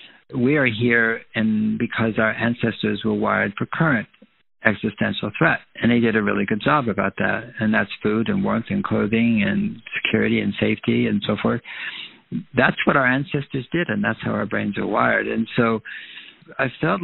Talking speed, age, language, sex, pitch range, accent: 185 wpm, 60-79, English, male, 110-125 Hz, American